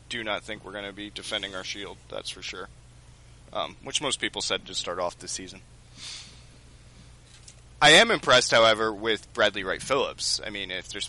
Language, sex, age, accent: English, male, 20-39, American